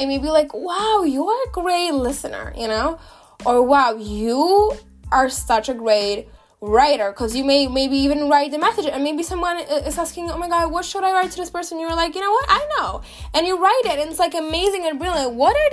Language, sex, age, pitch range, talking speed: English, female, 10-29, 245-320 Hz, 235 wpm